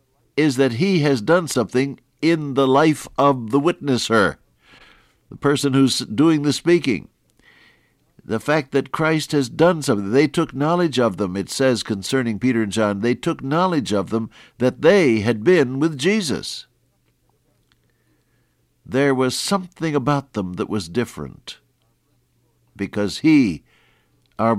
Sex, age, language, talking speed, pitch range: male, 60-79, English, 140 wpm, 105-145 Hz